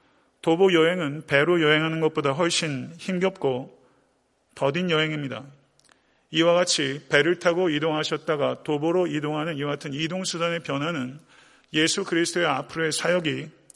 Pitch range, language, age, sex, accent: 145-175 Hz, Korean, 40-59, male, native